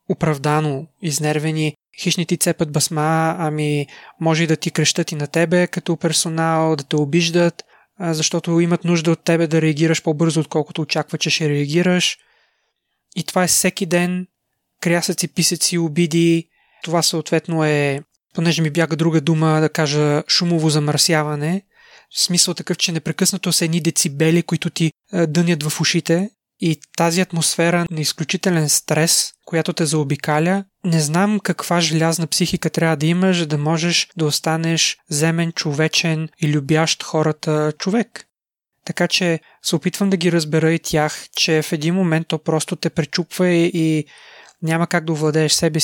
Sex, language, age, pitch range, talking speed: male, Bulgarian, 20-39, 155-175 Hz, 150 wpm